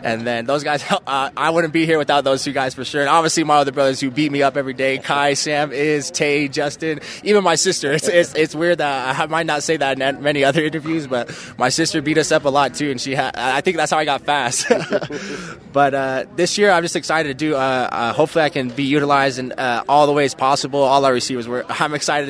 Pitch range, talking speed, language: 125-150 Hz, 255 wpm, English